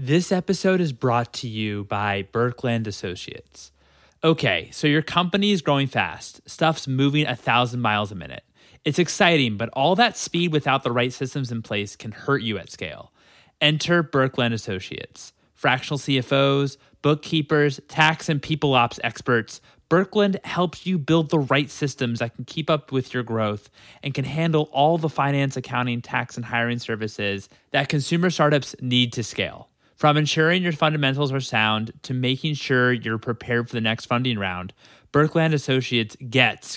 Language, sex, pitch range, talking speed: English, male, 120-155 Hz, 165 wpm